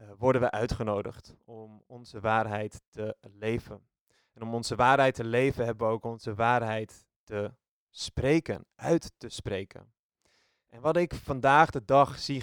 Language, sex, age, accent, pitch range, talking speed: Dutch, male, 20-39, Dutch, 105-125 Hz, 155 wpm